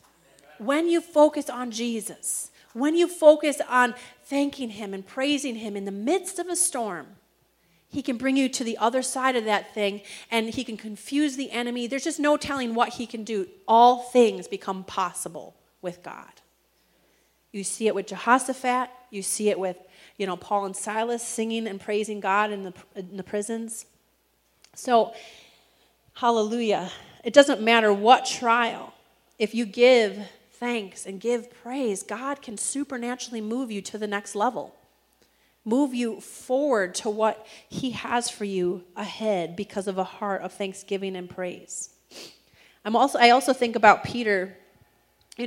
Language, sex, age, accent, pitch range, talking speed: English, female, 40-59, American, 200-245 Hz, 160 wpm